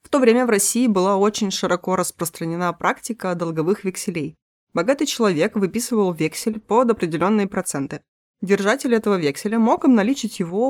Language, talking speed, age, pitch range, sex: Russian, 140 wpm, 20-39, 170-230 Hz, female